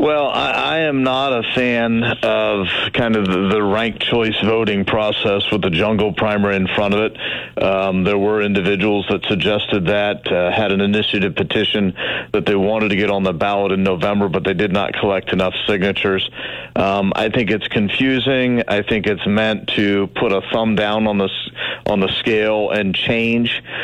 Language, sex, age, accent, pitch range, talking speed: English, male, 40-59, American, 105-125 Hz, 185 wpm